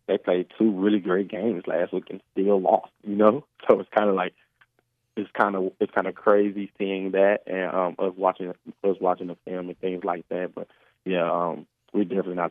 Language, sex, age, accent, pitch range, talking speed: English, male, 20-39, American, 90-100 Hz, 200 wpm